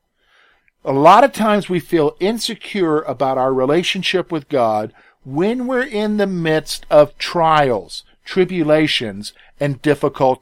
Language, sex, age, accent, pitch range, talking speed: English, male, 50-69, American, 155-190 Hz, 125 wpm